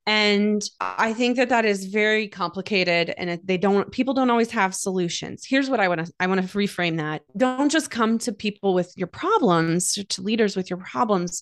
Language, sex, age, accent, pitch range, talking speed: English, female, 30-49, American, 185-235 Hz, 205 wpm